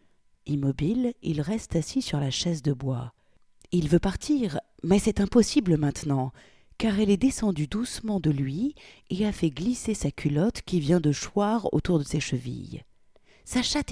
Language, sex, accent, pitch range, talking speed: French, female, French, 140-215 Hz, 170 wpm